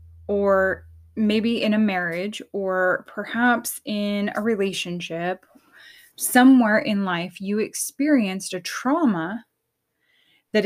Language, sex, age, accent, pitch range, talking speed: English, female, 10-29, American, 195-260 Hz, 100 wpm